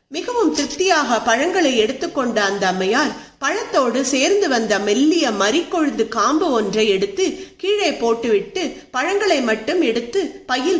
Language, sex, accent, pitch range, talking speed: Tamil, female, native, 220-345 Hz, 110 wpm